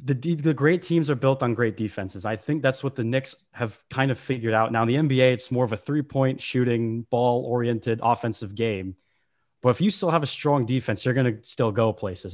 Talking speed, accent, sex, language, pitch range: 240 wpm, American, male, English, 115-140 Hz